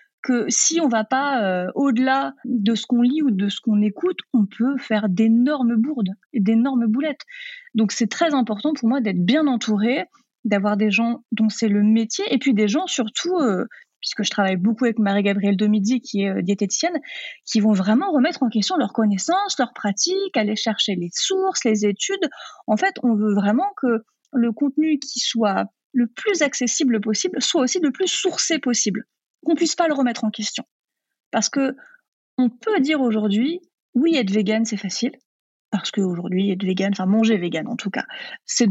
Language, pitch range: French, 210-295 Hz